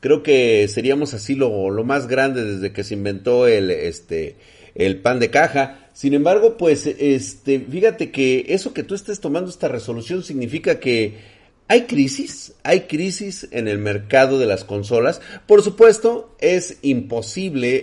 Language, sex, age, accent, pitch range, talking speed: Spanish, male, 40-59, Mexican, 105-155 Hz, 160 wpm